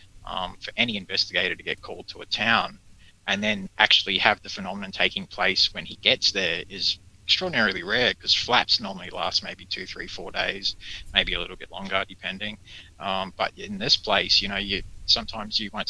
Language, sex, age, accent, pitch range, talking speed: English, male, 30-49, Australian, 95-110 Hz, 195 wpm